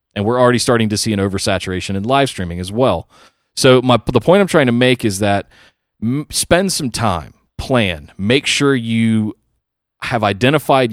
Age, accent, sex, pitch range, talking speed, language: 30-49, American, male, 100-125 Hz, 180 wpm, English